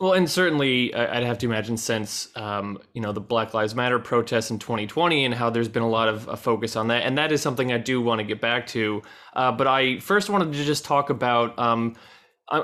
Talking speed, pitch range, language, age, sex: 240 wpm, 120-150 Hz, English, 20-39, male